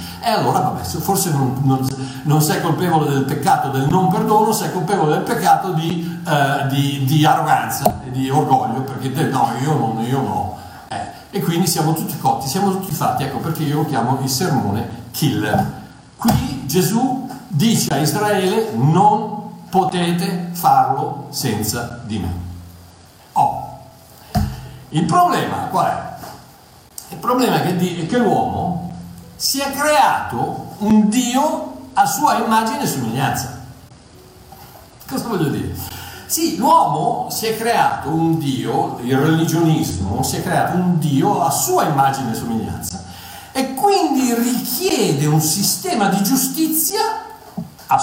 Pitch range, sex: 120-200 Hz, male